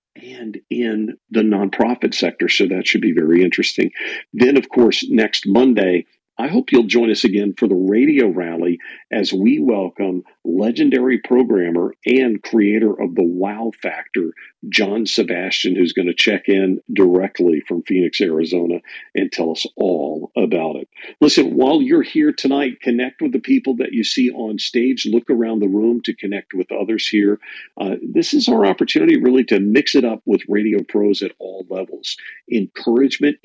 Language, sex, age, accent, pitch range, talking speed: English, male, 50-69, American, 95-125 Hz, 170 wpm